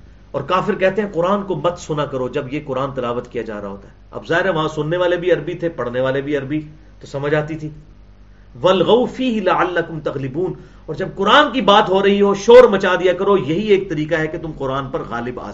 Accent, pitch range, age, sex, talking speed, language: Indian, 130-205 Hz, 50-69, male, 230 wpm, English